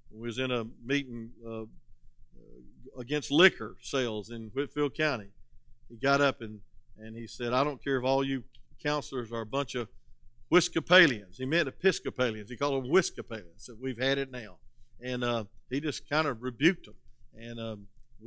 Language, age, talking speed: English, 50-69, 170 wpm